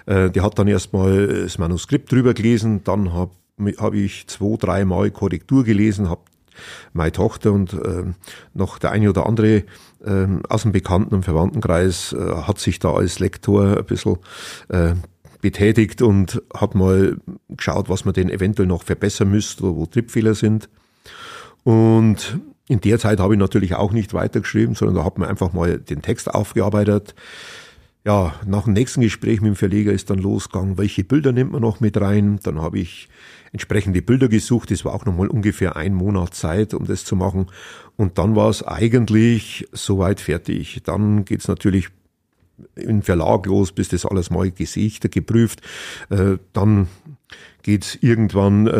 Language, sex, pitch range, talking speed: German, male, 95-110 Hz, 170 wpm